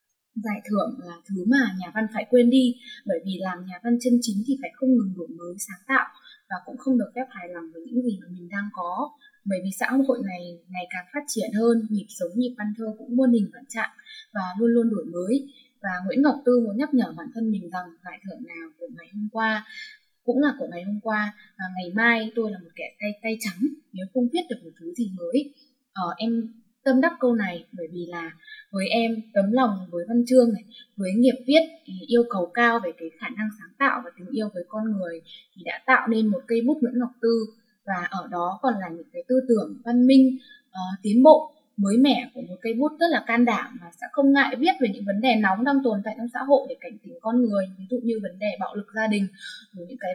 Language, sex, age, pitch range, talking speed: Vietnamese, female, 10-29, 195-255 Hz, 245 wpm